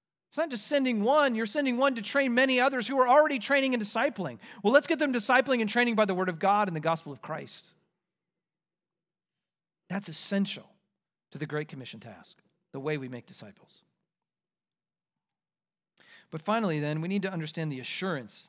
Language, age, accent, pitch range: English, 40-59, American, 170-235 Hz